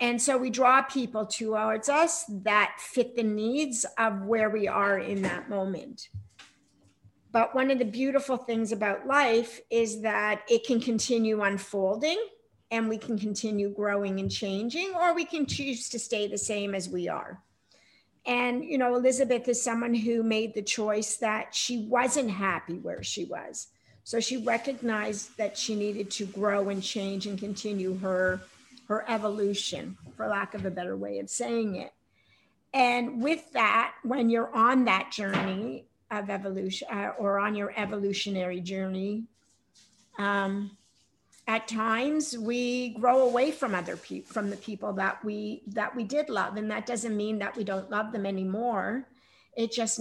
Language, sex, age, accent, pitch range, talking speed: English, female, 50-69, American, 200-245 Hz, 165 wpm